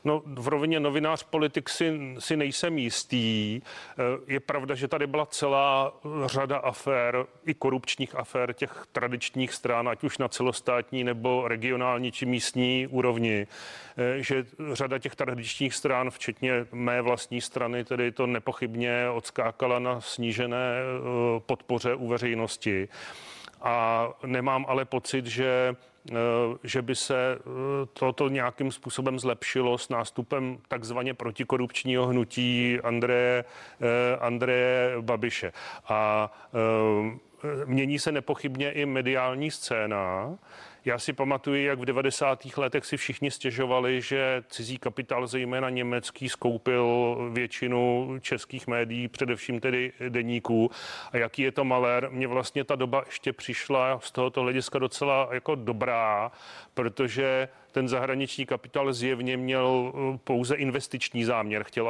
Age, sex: 40-59, male